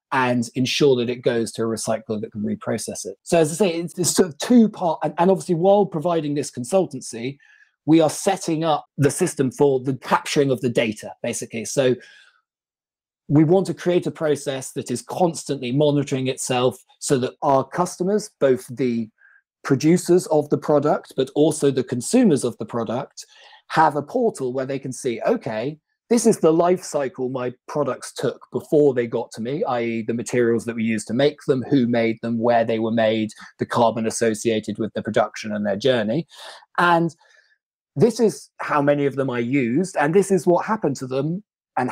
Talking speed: 190 wpm